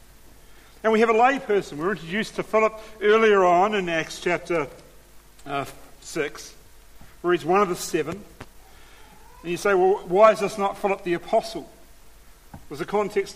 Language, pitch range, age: English, 150-200 Hz, 50-69